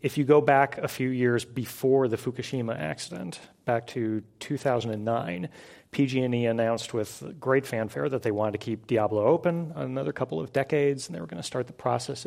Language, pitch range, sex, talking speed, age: English, 110-135 Hz, male, 185 wpm, 40-59